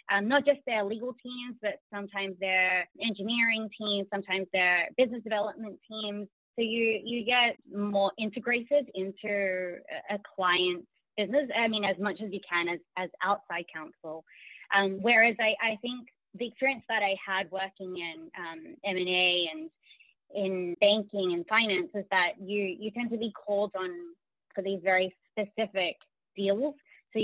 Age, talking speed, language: 20-39, 155 wpm, English